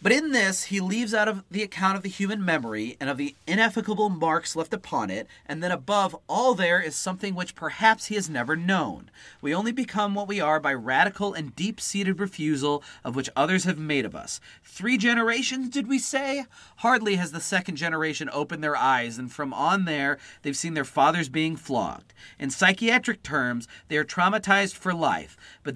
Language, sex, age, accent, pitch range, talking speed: English, male, 40-59, American, 155-205 Hz, 195 wpm